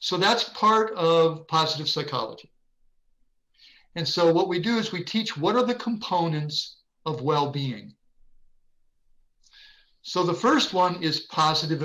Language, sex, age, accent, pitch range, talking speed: English, male, 60-79, American, 160-210 Hz, 130 wpm